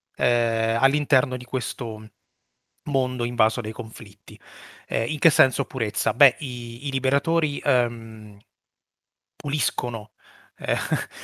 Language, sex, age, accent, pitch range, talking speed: Italian, male, 30-49, native, 115-140 Hz, 105 wpm